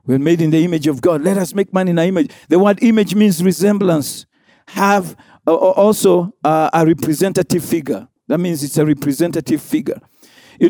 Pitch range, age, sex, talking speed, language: 160-210 Hz, 50-69, male, 175 wpm, English